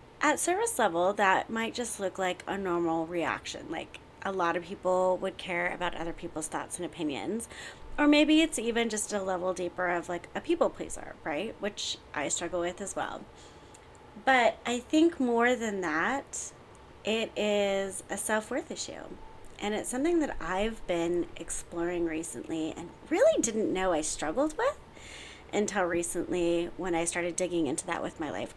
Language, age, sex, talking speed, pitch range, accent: English, 30-49, female, 170 wpm, 175-220 Hz, American